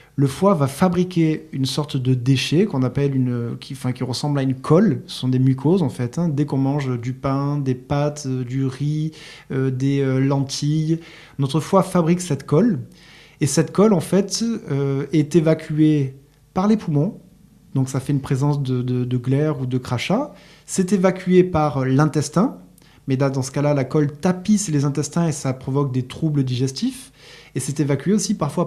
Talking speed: 190 wpm